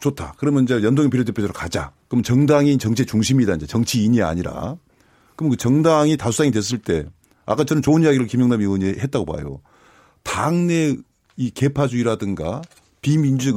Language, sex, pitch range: Korean, male, 115-155 Hz